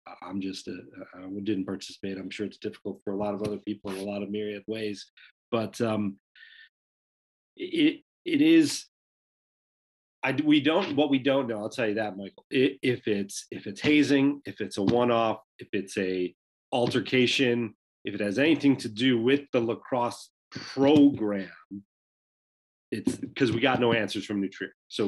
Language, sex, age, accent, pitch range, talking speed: English, male, 40-59, American, 100-120 Hz, 175 wpm